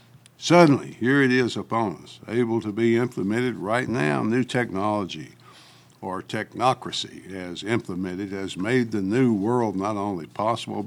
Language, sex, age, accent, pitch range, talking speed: English, male, 60-79, American, 100-125 Hz, 145 wpm